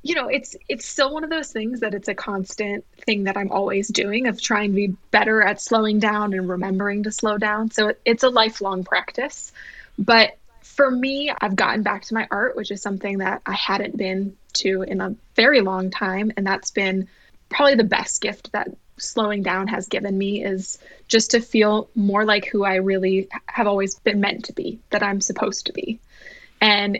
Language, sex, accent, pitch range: English, female, American, 195-225 Hz